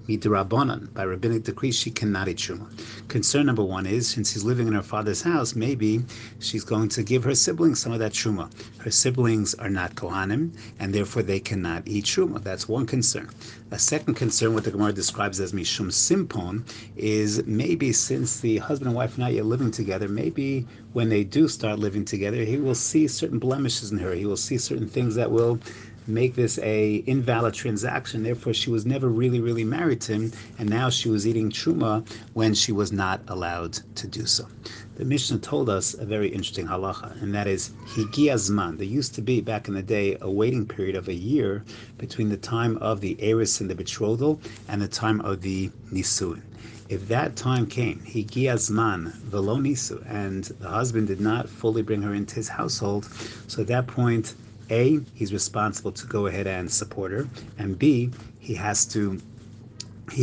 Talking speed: 190 wpm